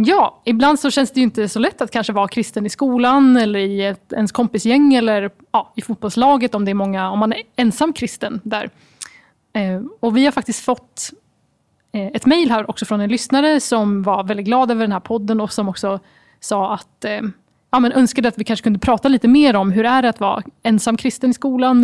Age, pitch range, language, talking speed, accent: 20-39, 215-255 Hz, Swedish, 220 wpm, native